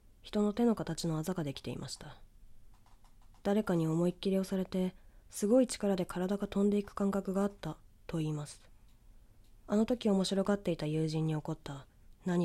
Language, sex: Japanese, female